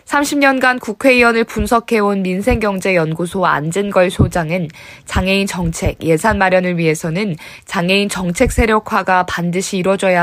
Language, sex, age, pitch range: Korean, female, 20-39, 175-225 Hz